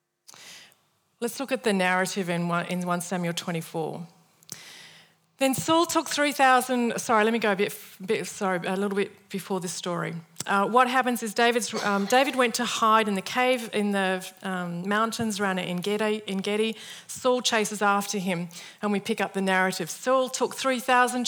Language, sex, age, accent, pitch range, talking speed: English, female, 40-59, Australian, 185-230 Hz, 170 wpm